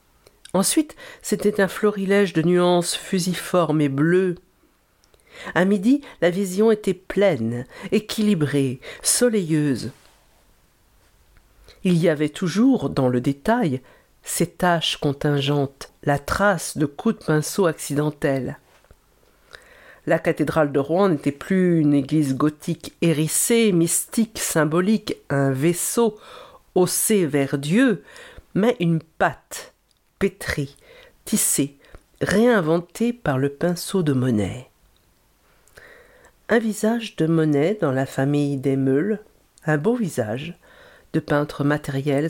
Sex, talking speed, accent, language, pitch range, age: female, 110 wpm, French, French, 145-205 Hz, 50-69